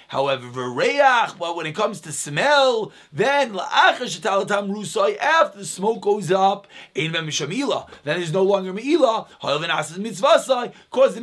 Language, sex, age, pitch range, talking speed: English, male, 30-49, 190-260 Hz, 110 wpm